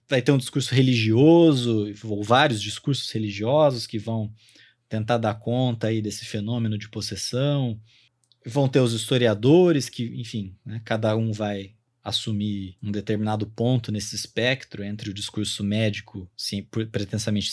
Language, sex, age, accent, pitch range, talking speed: Portuguese, male, 20-39, Brazilian, 110-155 Hz, 135 wpm